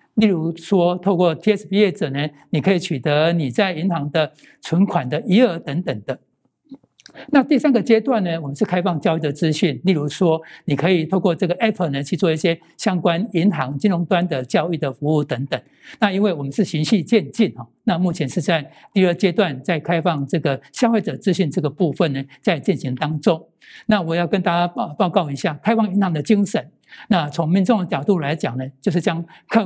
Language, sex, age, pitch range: Chinese, male, 60-79, 160-215 Hz